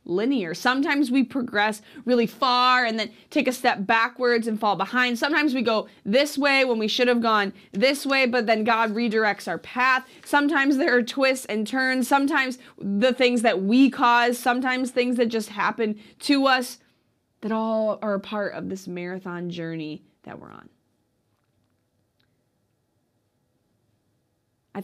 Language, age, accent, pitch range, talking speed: English, 20-39, American, 185-245 Hz, 155 wpm